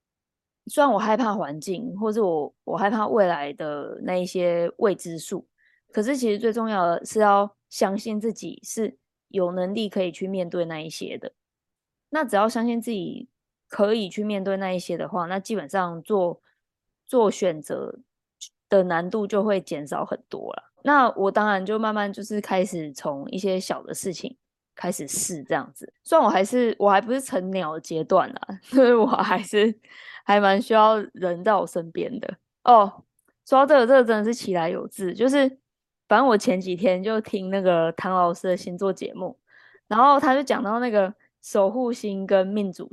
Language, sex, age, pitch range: Chinese, female, 20-39, 185-235 Hz